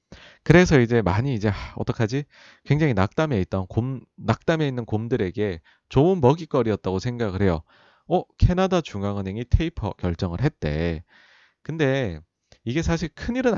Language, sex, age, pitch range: Korean, male, 30-49, 95-145 Hz